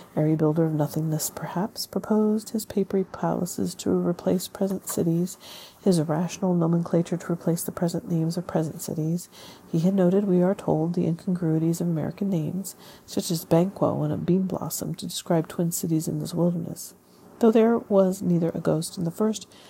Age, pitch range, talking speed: 40-59, 165-195 Hz, 175 wpm